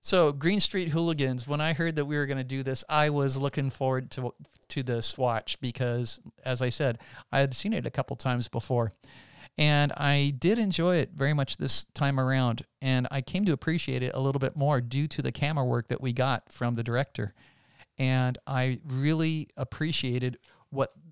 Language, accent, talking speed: English, American, 200 wpm